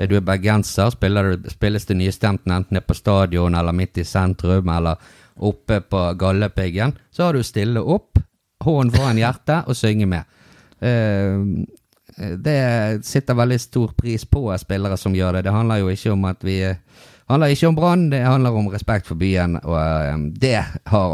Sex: male